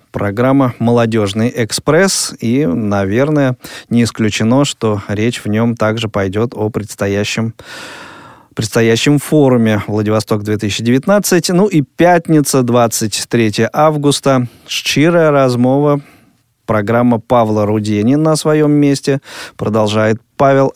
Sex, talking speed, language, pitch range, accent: male, 95 wpm, Russian, 110-140 Hz, native